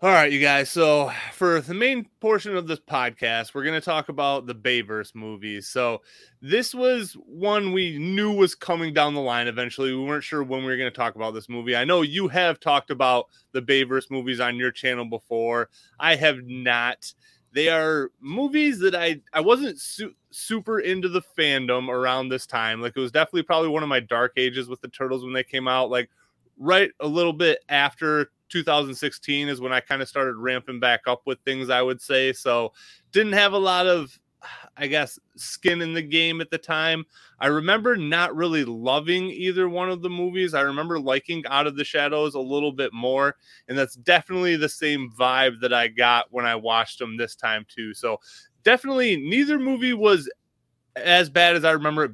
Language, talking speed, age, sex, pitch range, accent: English, 200 wpm, 20-39, male, 130-175 Hz, American